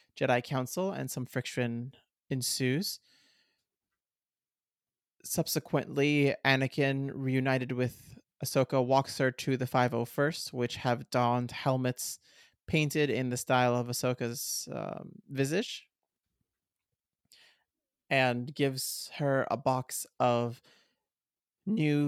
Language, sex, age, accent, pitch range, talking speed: English, male, 30-49, American, 125-140 Hz, 95 wpm